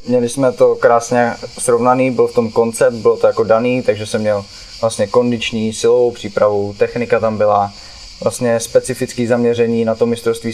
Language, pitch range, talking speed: Czech, 110-130 Hz, 165 wpm